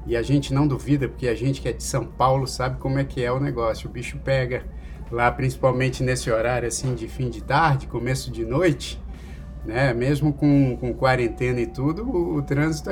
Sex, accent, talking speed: male, Brazilian, 210 wpm